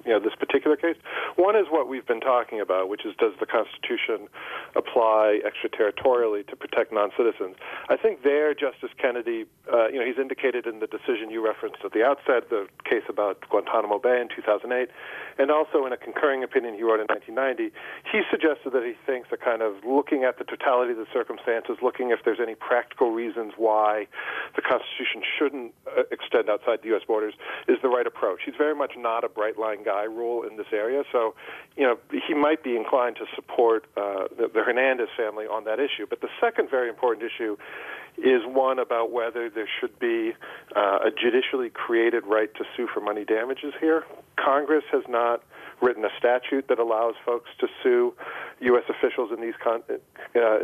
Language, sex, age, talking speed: English, male, 40-59, 190 wpm